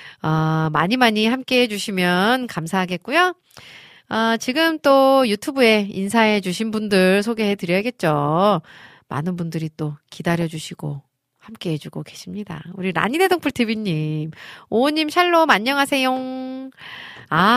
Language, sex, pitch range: Korean, female, 165-255 Hz